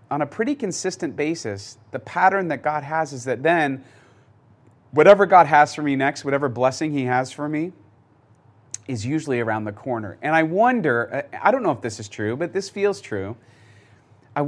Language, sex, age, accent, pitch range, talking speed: English, male, 30-49, American, 115-150 Hz, 185 wpm